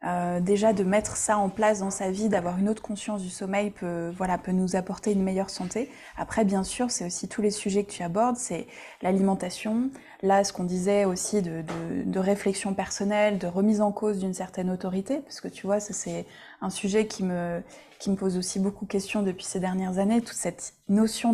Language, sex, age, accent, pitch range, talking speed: French, female, 20-39, French, 185-210 Hz, 220 wpm